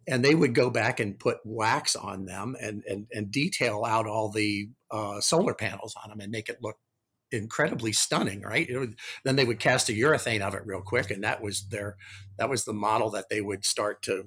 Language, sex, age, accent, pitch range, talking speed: English, male, 50-69, American, 110-130 Hz, 225 wpm